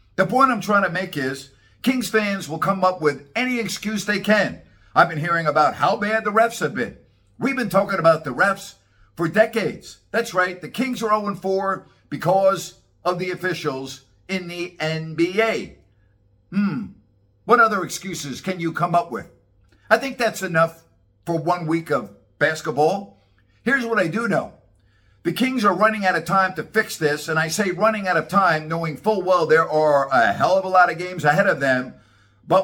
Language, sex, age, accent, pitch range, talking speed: English, male, 50-69, American, 150-205 Hz, 190 wpm